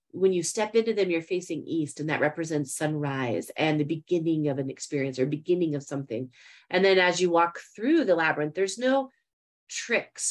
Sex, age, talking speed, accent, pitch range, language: female, 30-49, 190 wpm, American, 155-200 Hz, English